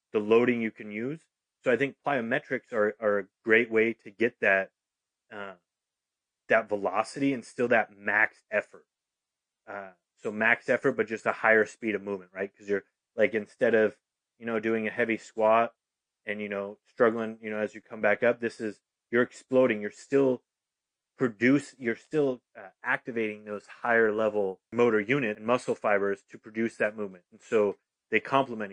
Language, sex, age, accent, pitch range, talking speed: English, male, 30-49, American, 105-120 Hz, 180 wpm